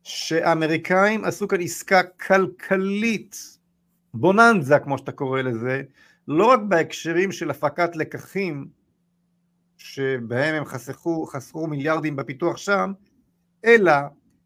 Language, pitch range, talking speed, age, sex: Hebrew, 150-185 Hz, 100 wpm, 50-69, male